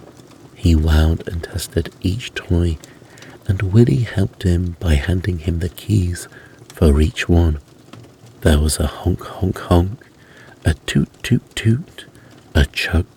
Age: 50-69